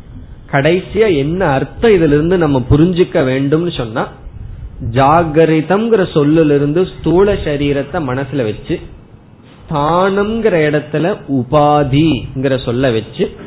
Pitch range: 125-160 Hz